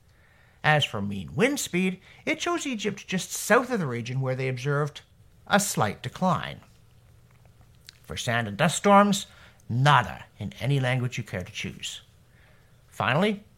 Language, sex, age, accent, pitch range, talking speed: English, male, 60-79, American, 120-185 Hz, 145 wpm